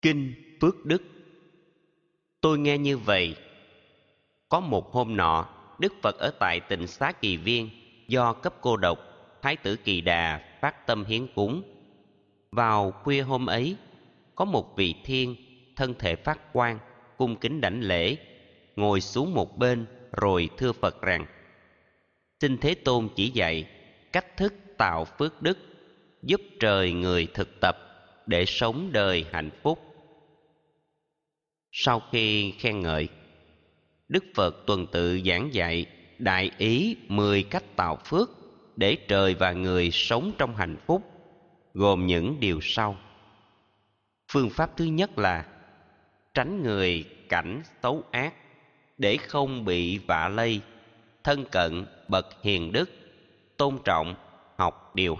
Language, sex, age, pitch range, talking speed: Vietnamese, male, 30-49, 95-145 Hz, 140 wpm